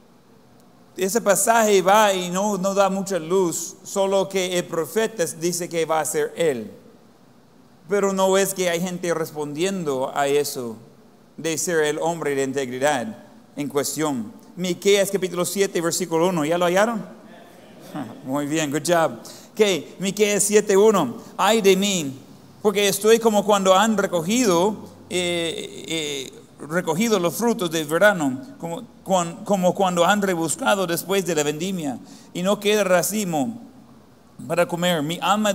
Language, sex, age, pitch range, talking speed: Spanish, male, 40-59, 170-215 Hz, 145 wpm